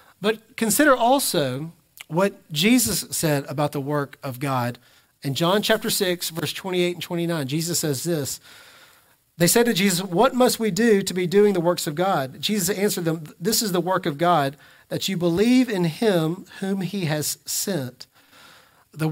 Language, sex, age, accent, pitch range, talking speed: English, male, 40-59, American, 140-205 Hz, 175 wpm